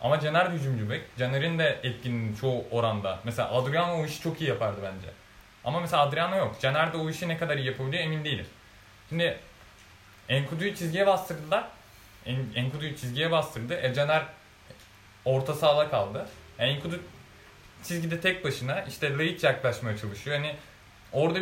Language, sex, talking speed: Turkish, male, 150 wpm